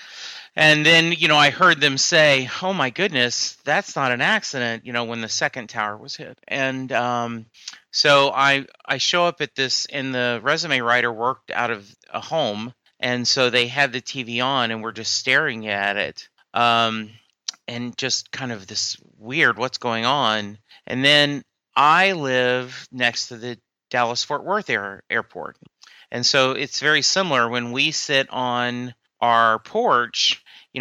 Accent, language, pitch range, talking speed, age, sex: American, English, 115-135 Hz, 170 wpm, 30-49, male